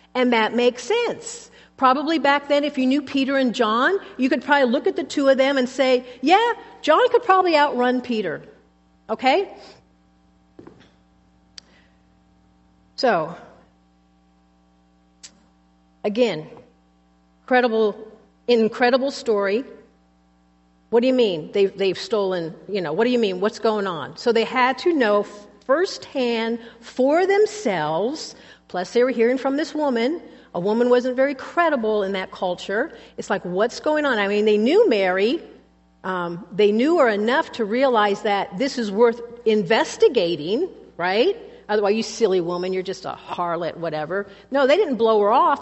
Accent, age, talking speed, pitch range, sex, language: American, 50-69, 150 wpm, 185-275 Hz, female, English